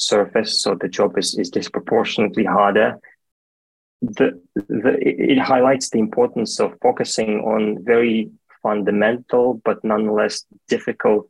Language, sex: English, male